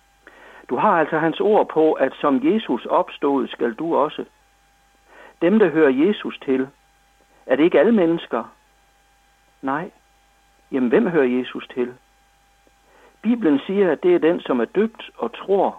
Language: Danish